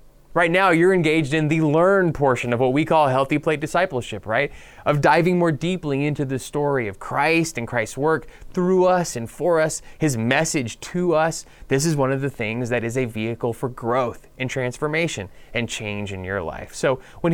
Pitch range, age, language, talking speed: 120-155 Hz, 20-39, English, 200 wpm